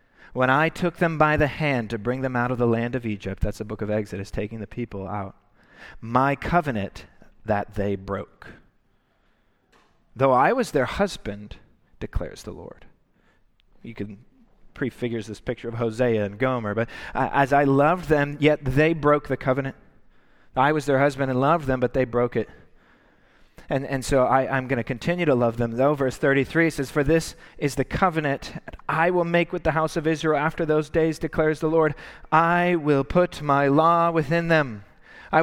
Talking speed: 190 wpm